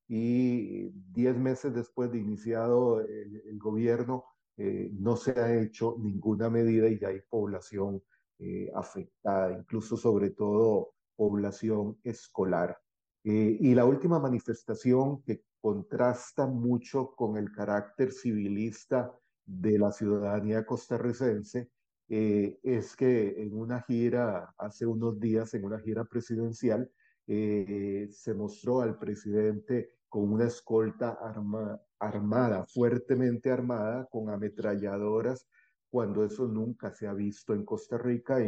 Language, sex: Spanish, male